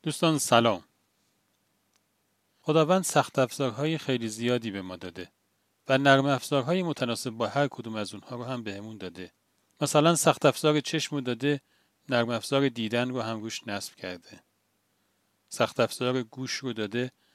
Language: Persian